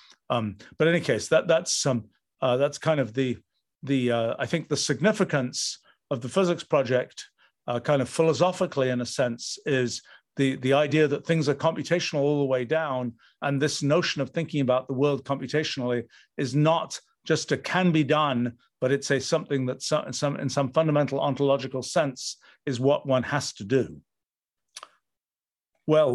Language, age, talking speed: English, 50-69, 180 wpm